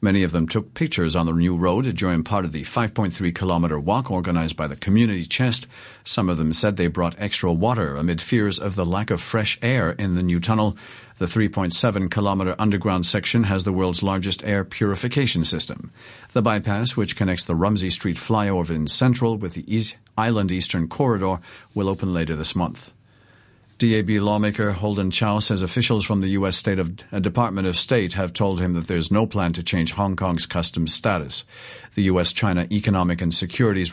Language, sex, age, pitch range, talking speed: English, male, 50-69, 85-110 Hz, 180 wpm